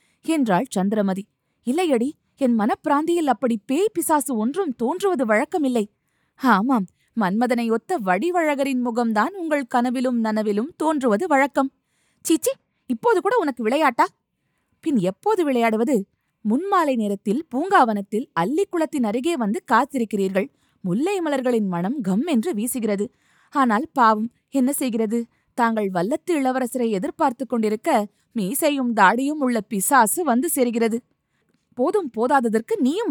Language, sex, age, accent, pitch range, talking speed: Tamil, female, 20-39, native, 220-300 Hz, 110 wpm